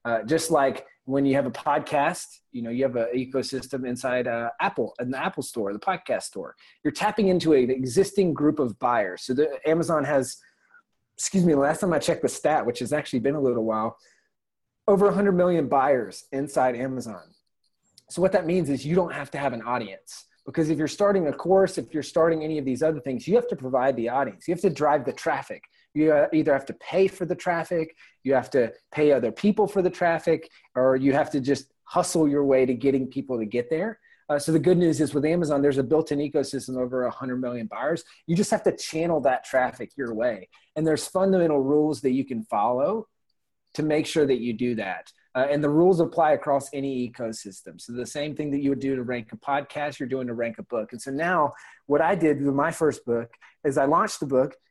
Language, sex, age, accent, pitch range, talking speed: English, male, 30-49, American, 130-165 Hz, 225 wpm